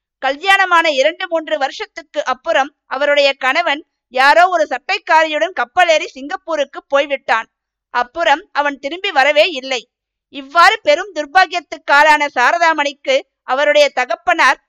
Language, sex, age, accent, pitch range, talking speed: Tamil, female, 50-69, native, 275-335 Hz, 95 wpm